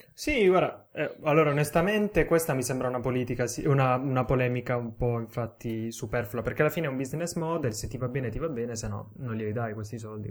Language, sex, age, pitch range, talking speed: Italian, male, 10-29, 115-140 Hz, 225 wpm